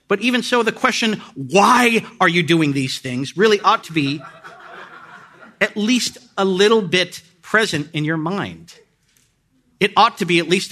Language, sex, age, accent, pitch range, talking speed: English, male, 50-69, American, 150-210 Hz, 170 wpm